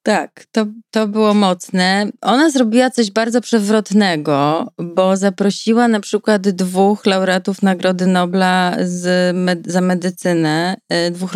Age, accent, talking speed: 30-49, Polish, 110 wpm